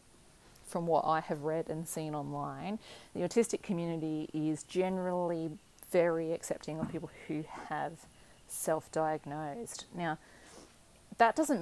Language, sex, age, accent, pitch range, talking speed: English, female, 30-49, Australian, 155-195 Hz, 120 wpm